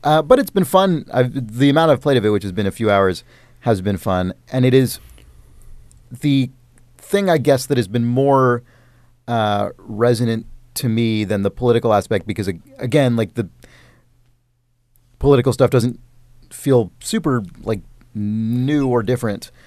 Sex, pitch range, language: male, 110-135 Hz, English